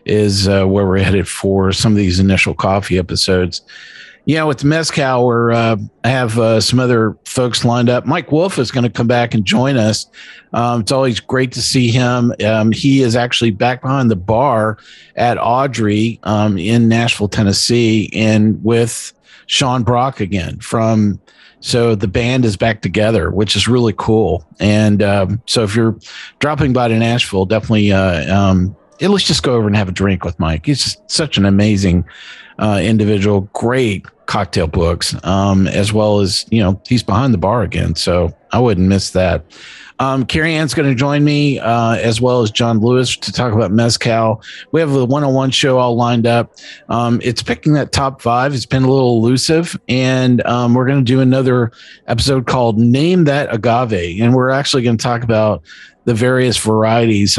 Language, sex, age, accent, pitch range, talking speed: English, male, 50-69, American, 100-125 Hz, 185 wpm